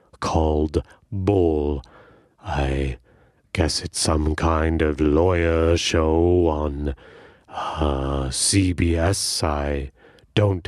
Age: 30-49